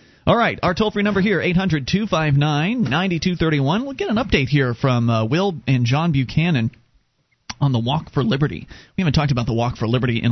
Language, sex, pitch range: English, male, 120-150 Hz